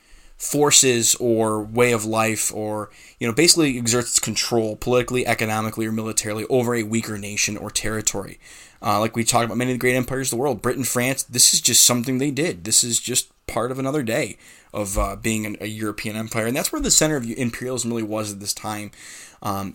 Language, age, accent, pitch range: English, 20-39, American, 105-120 Hz